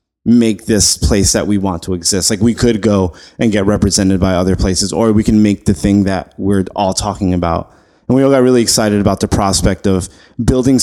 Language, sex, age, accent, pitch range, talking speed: English, male, 30-49, American, 95-115 Hz, 220 wpm